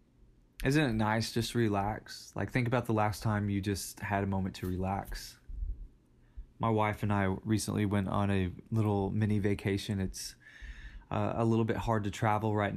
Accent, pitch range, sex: American, 100-110 Hz, male